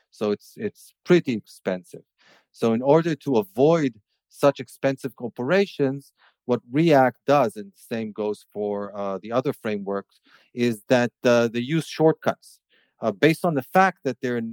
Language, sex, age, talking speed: English, male, 40-59, 155 wpm